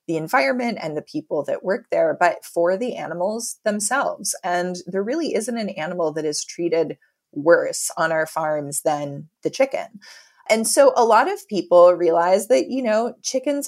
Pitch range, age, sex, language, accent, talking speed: 165-225 Hz, 20-39, female, English, American, 170 wpm